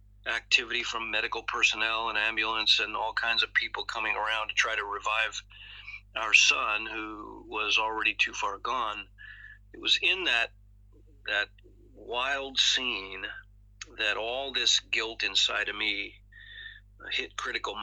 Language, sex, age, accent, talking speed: English, male, 40-59, American, 140 wpm